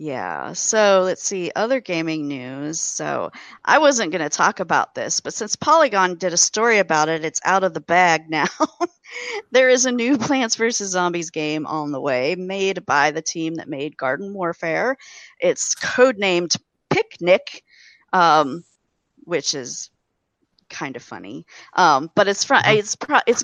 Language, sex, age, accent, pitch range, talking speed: English, female, 40-59, American, 155-205 Hz, 155 wpm